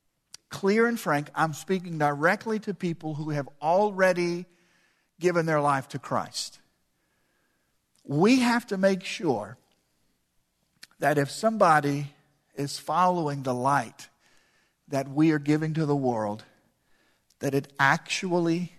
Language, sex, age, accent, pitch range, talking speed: English, male, 50-69, American, 140-190 Hz, 120 wpm